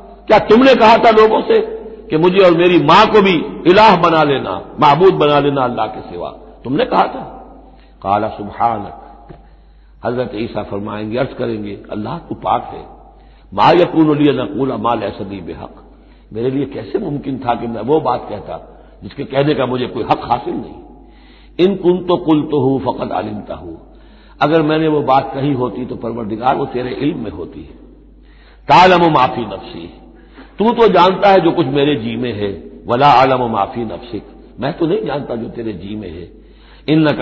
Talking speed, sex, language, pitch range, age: 175 wpm, male, Hindi, 115-175 Hz, 60-79